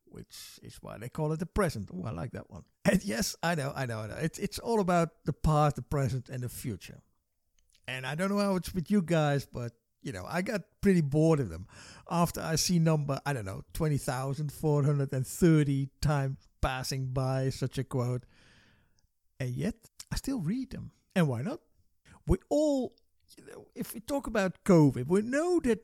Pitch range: 135-190 Hz